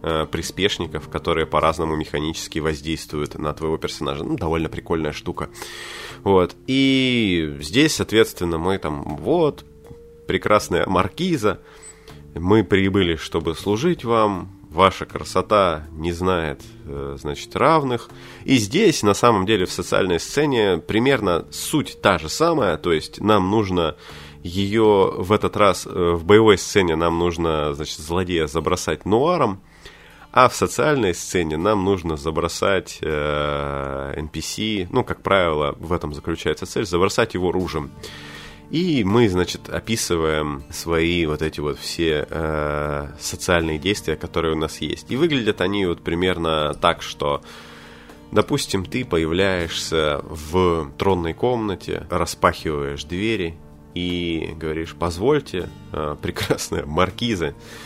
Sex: male